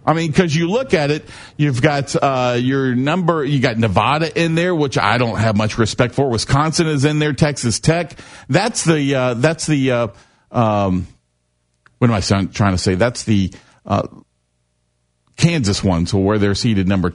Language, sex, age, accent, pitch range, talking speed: English, male, 50-69, American, 110-155 Hz, 185 wpm